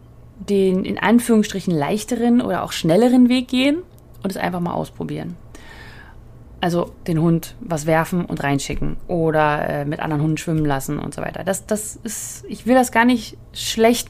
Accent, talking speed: German, 170 wpm